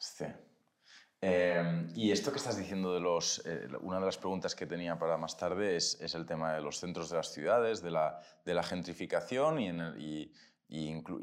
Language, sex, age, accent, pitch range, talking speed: Spanish, male, 20-39, Spanish, 80-95 Hz, 215 wpm